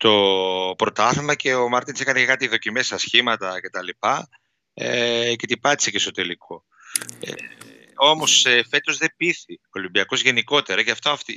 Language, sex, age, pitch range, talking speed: Greek, male, 30-49, 105-130 Hz, 165 wpm